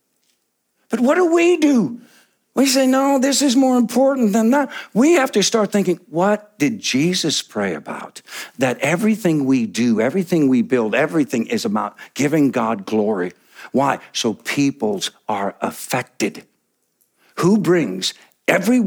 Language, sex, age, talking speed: English, male, 60-79, 145 wpm